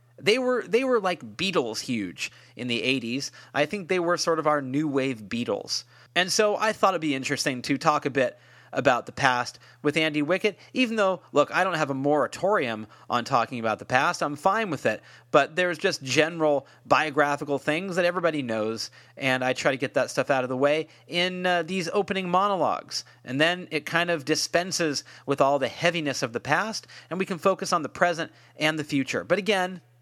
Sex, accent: male, American